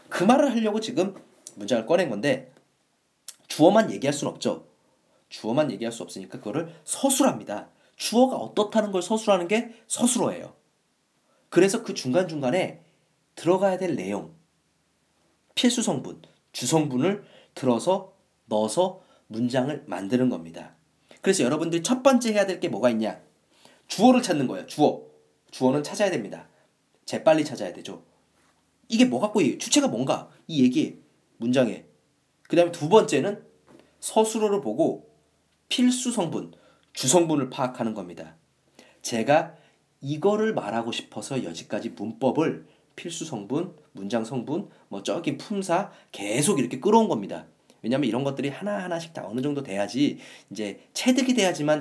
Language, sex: Korean, male